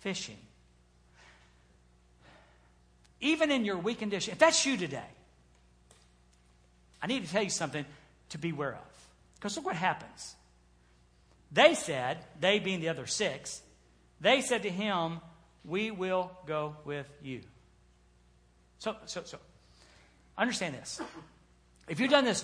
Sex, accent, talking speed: male, American, 130 wpm